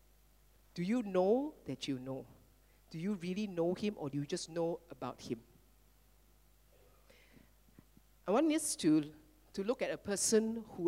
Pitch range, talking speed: 170-270 Hz, 155 wpm